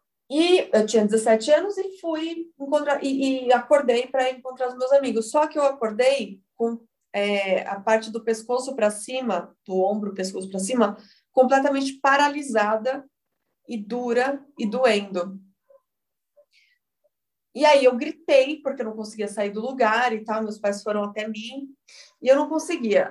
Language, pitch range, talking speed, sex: Portuguese, 210-270 Hz, 160 wpm, female